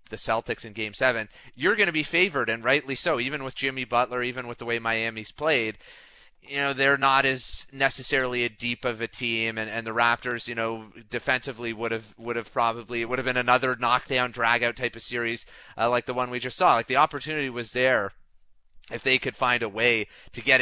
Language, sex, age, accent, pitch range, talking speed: English, male, 30-49, American, 115-135 Hz, 220 wpm